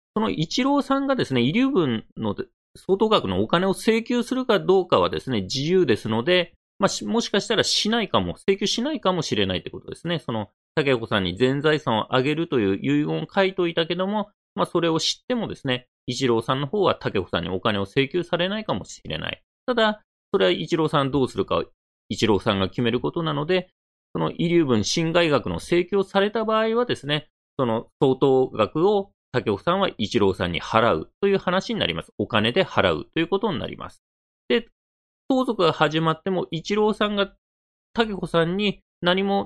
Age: 30-49